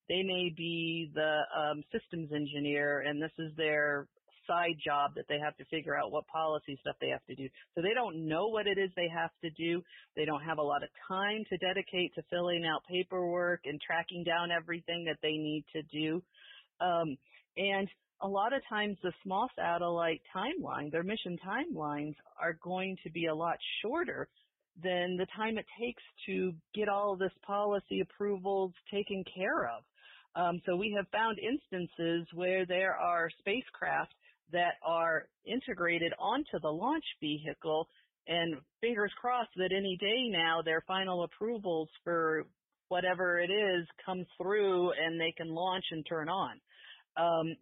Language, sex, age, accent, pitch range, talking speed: English, female, 40-59, American, 160-190 Hz, 170 wpm